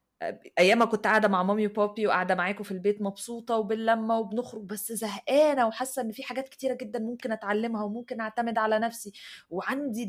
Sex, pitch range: female, 180-230 Hz